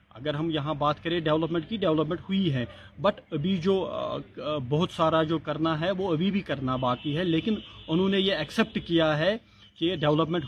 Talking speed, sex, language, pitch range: 190 wpm, male, Urdu, 140-165 Hz